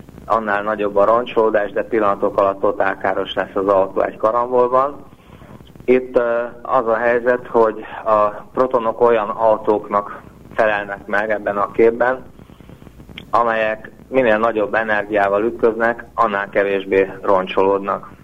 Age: 30-49